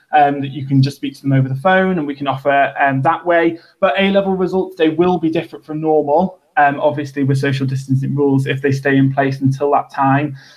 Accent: British